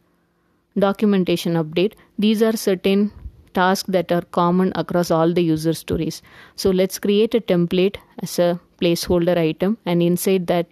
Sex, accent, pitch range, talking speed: female, Indian, 170-190 Hz, 145 wpm